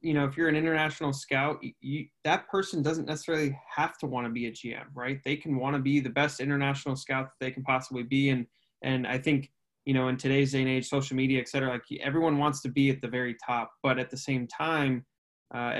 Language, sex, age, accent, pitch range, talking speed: English, male, 20-39, American, 125-140 Hz, 245 wpm